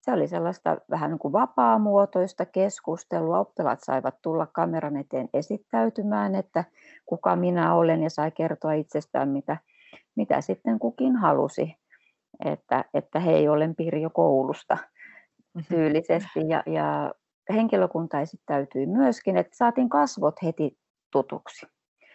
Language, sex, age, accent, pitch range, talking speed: Finnish, female, 30-49, native, 145-175 Hz, 120 wpm